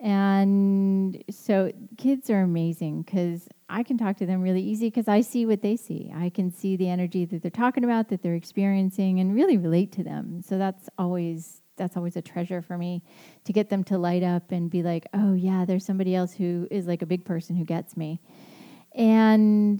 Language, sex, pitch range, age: English, female, 175-200 Hz, 30-49